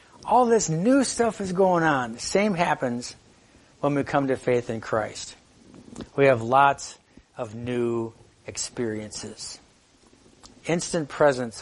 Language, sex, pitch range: English, male, 125-160 Hz